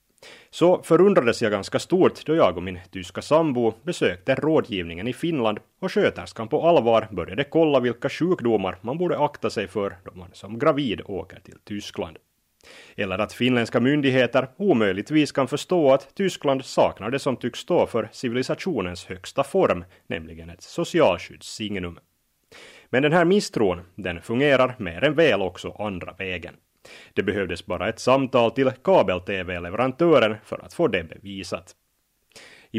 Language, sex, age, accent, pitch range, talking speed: Finnish, male, 30-49, native, 95-140 Hz, 145 wpm